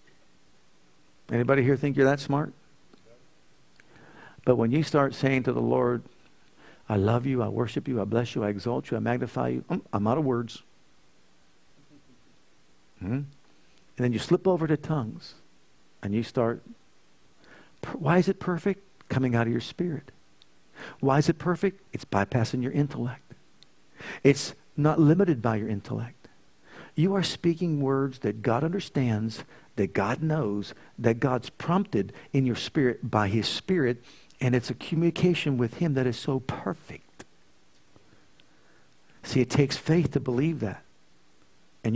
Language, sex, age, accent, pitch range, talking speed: English, male, 50-69, American, 105-150 Hz, 150 wpm